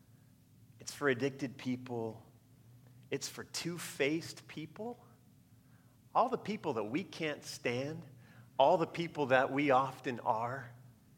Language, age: English, 40-59